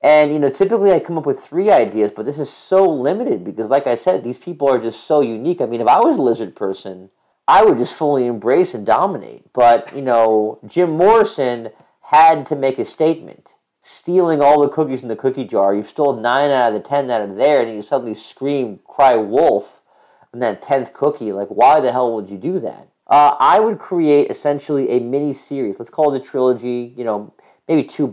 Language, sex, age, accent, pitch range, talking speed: English, male, 40-59, American, 115-150 Hz, 220 wpm